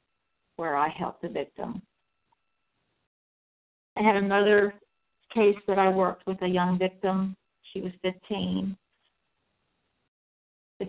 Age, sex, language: 50-69, female, English